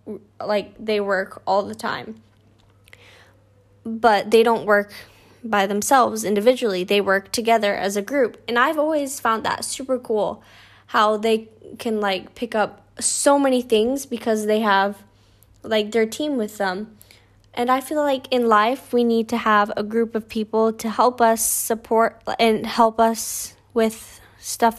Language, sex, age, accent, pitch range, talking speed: English, female, 10-29, American, 195-235 Hz, 160 wpm